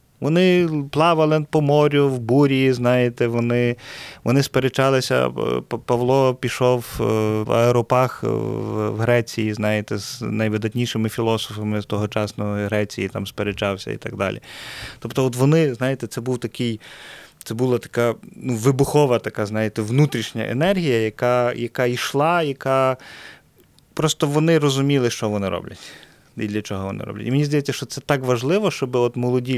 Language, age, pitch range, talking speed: Ukrainian, 30-49, 110-135 Hz, 140 wpm